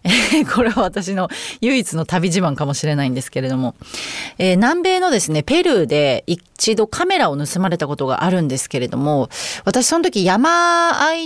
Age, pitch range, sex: 30-49, 155-245 Hz, female